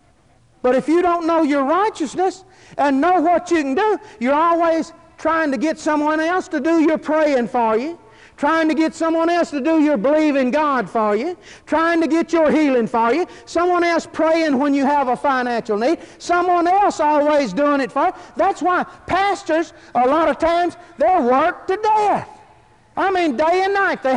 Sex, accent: male, American